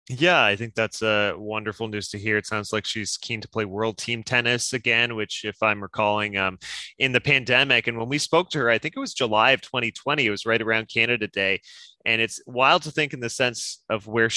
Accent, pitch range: American, 105-125 Hz